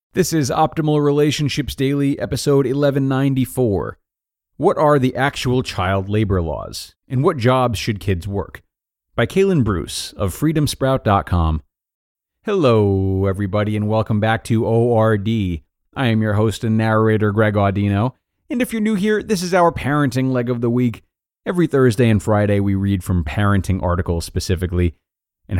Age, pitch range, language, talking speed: 30-49, 90-130 Hz, English, 150 wpm